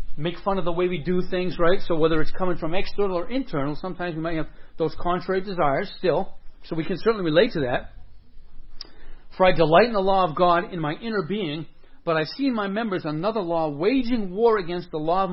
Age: 40-59